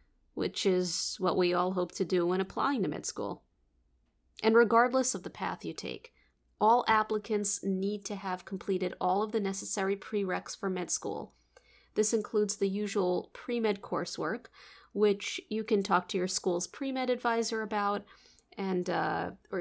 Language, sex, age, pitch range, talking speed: English, female, 30-49, 190-225 Hz, 160 wpm